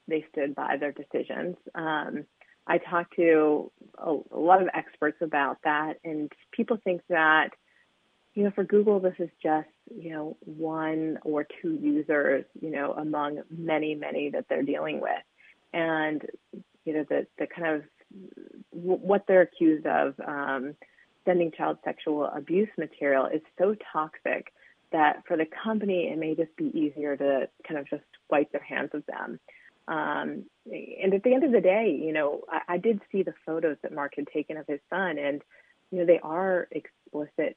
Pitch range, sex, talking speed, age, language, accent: 150-185 Hz, female, 175 wpm, 30-49, English, American